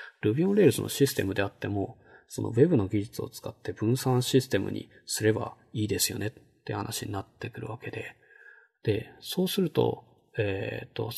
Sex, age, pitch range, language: male, 20-39, 105-135 Hz, Japanese